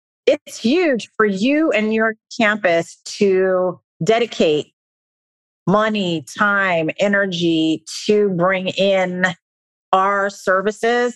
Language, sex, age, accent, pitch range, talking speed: English, female, 40-59, American, 175-210 Hz, 90 wpm